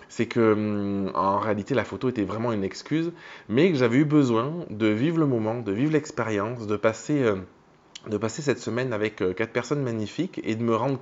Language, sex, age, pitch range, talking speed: French, male, 20-39, 100-125 Hz, 190 wpm